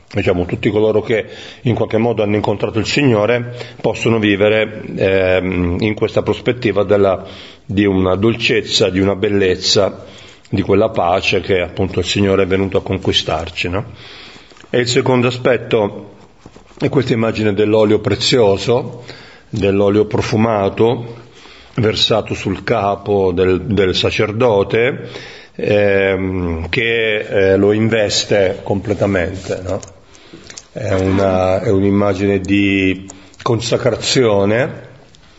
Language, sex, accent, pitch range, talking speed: Italian, male, native, 100-120 Hz, 110 wpm